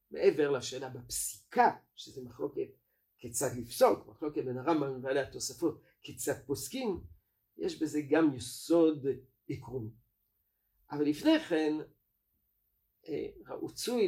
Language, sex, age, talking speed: Hebrew, male, 50-69, 100 wpm